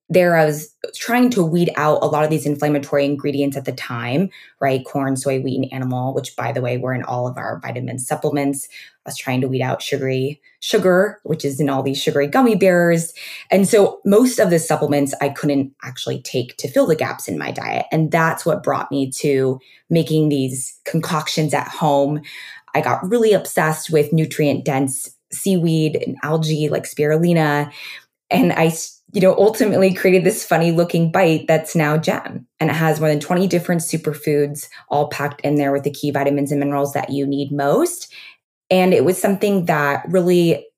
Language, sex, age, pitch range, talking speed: English, female, 20-39, 140-165 Hz, 190 wpm